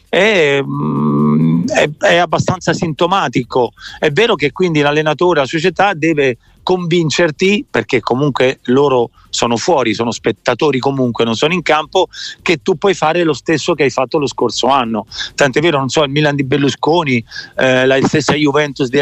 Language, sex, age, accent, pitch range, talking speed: Italian, male, 40-59, native, 140-175 Hz, 160 wpm